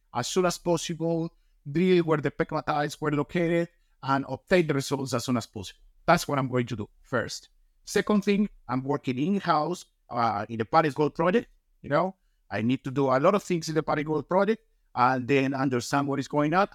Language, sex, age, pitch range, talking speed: English, male, 50-69, 120-160 Hz, 210 wpm